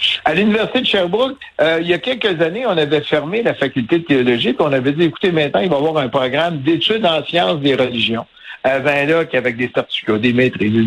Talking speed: 235 wpm